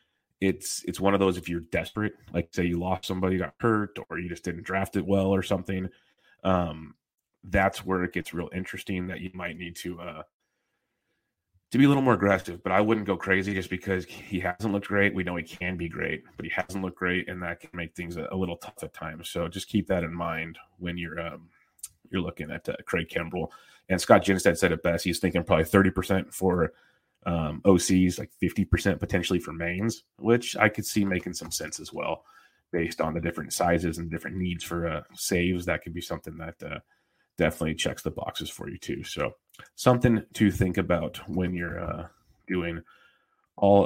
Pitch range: 85-95 Hz